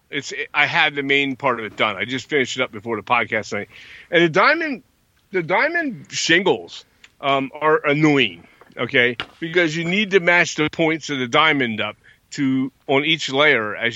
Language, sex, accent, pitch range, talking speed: English, male, American, 115-160 Hz, 185 wpm